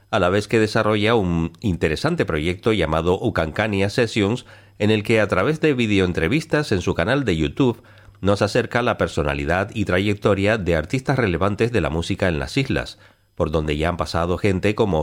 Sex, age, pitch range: male, 40-59, 85-115 Hz